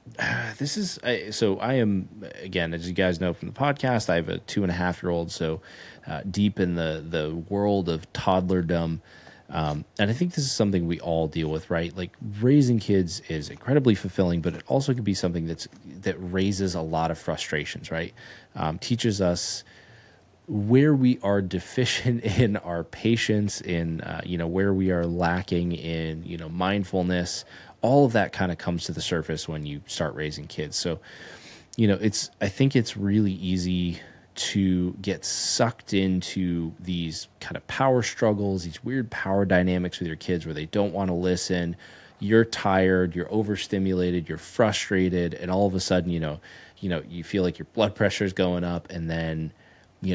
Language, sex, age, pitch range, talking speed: English, male, 30-49, 85-105 Hz, 190 wpm